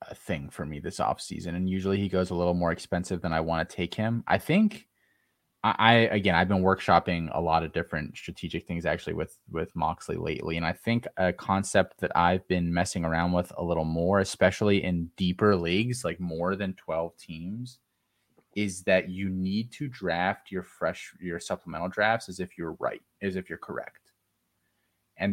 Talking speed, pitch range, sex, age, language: 195 wpm, 85-105 Hz, male, 20-39, English